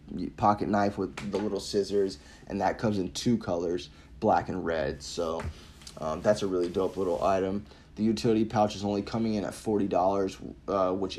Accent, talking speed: American, 180 wpm